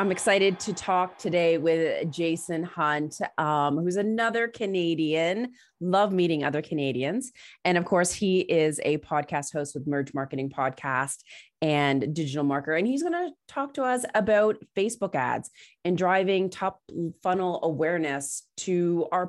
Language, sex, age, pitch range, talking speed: English, female, 30-49, 155-205 Hz, 150 wpm